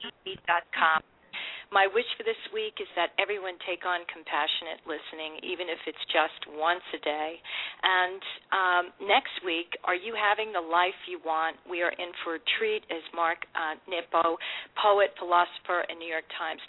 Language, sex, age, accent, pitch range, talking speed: English, female, 40-59, American, 160-190 Hz, 165 wpm